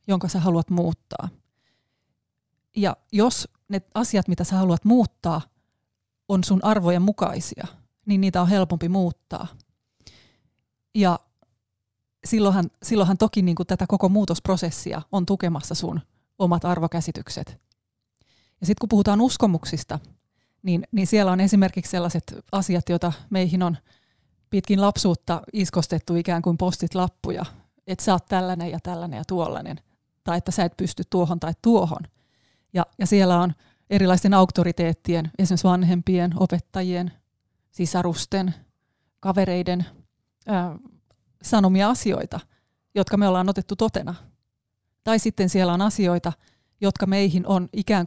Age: 20-39